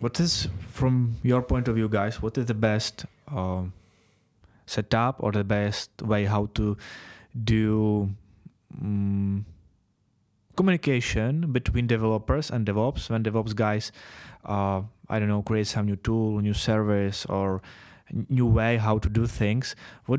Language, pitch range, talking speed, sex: Czech, 105-120 Hz, 145 wpm, male